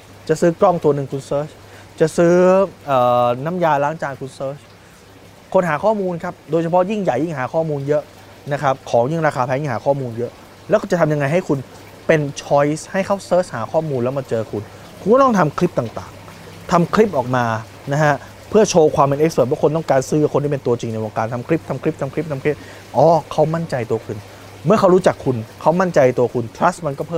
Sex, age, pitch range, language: male, 20-39, 105-145 Hz, Thai